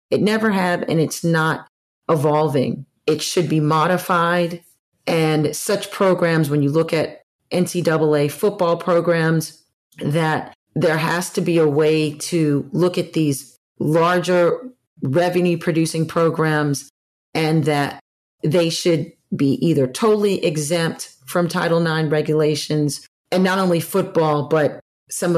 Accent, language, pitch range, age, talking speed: American, English, 150-175 Hz, 40-59, 125 wpm